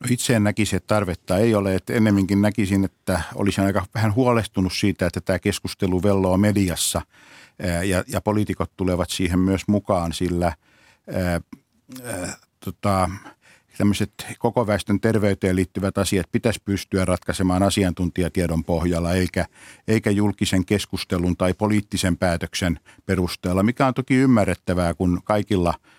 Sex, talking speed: male, 120 wpm